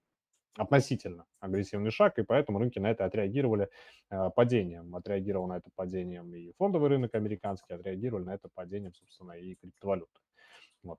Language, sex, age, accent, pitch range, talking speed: Russian, male, 20-39, native, 90-110 Hz, 145 wpm